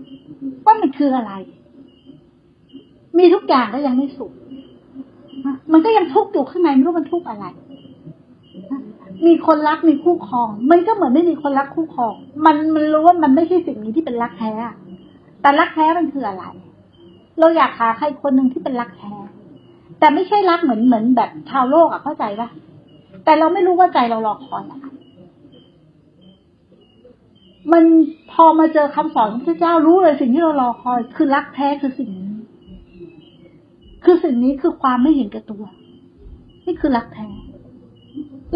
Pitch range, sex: 225-320 Hz, female